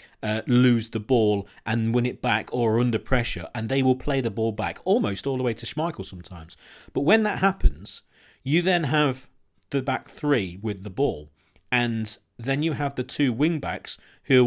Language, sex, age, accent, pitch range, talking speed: English, male, 40-59, British, 105-140 Hz, 195 wpm